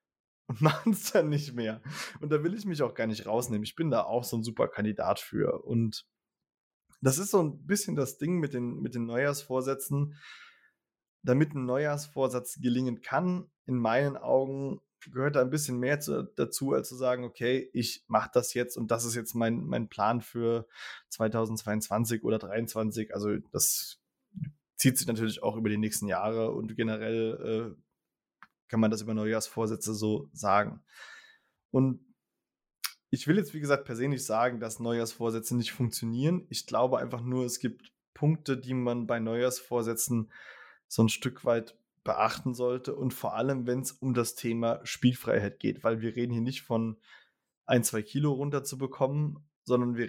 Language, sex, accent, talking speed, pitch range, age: German, male, German, 170 wpm, 115-135 Hz, 20-39